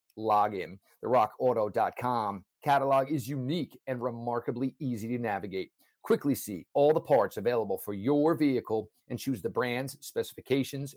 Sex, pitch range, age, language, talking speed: male, 115-155 Hz, 40-59, English, 140 wpm